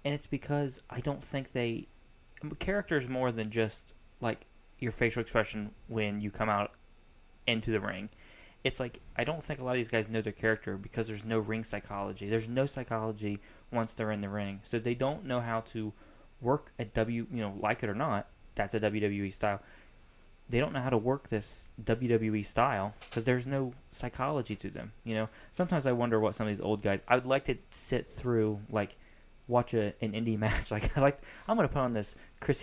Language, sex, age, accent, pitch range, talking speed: English, male, 20-39, American, 105-125 Hz, 210 wpm